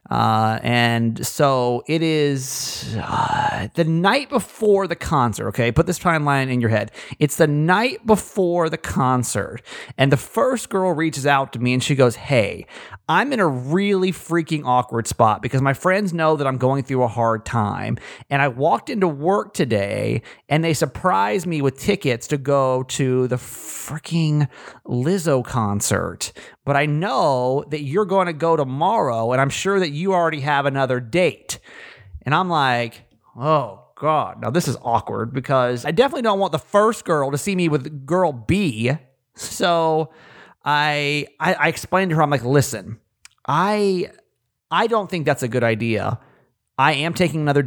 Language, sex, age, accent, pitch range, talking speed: English, male, 30-49, American, 125-165 Hz, 170 wpm